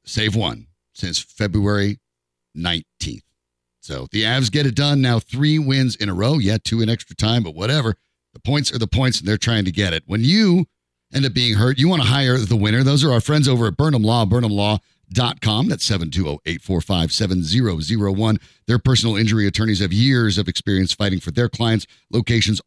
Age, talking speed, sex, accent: 50-69, 190 wpm, male, American